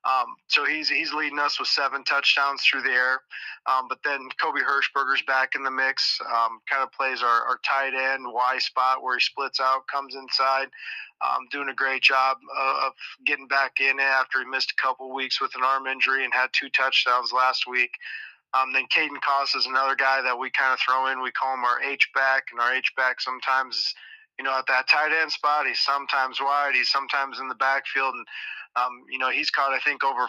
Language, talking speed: English, 220 wpm